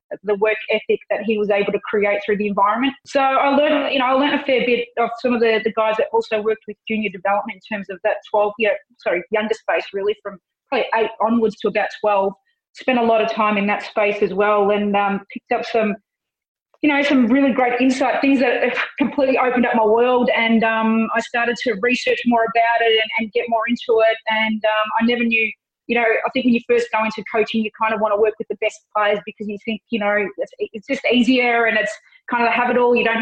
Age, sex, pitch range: 30-49, female, 210-240 Hz